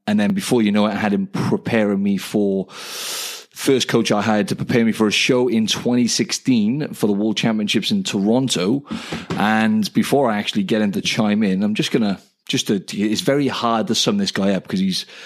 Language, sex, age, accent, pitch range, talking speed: English, male, 30-49, British, 105-135 Hz, 210 wpm